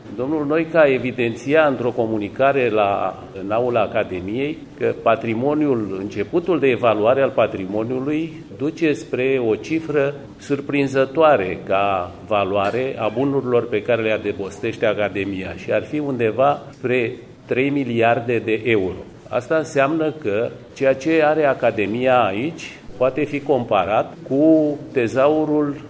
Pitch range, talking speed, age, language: 110-145 Hz, 115 wpm, 40-59, English